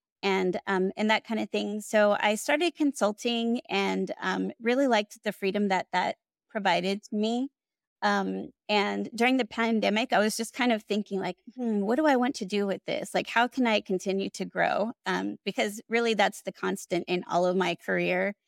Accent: American